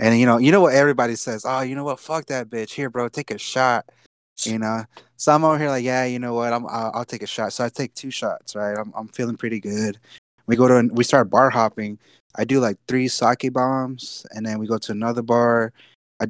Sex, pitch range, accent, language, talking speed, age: male, 110-130 Hz, American, English, 265 wpm, 20-39